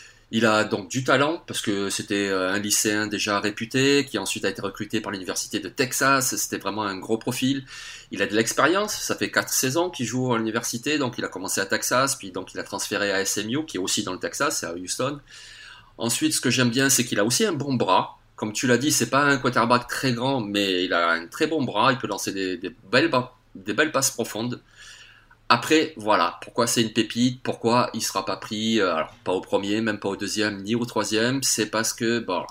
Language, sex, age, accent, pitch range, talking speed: French, male, 30-49, French, 105-125 Hz, 235 wpm